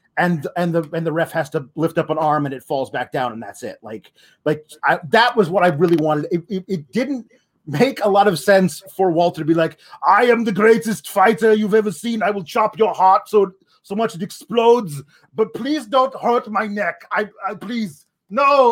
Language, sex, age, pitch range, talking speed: English, male, 30-49, 170-230 Hz, 230 wpm